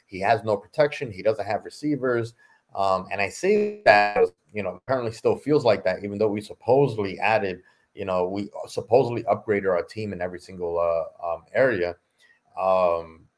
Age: 30-49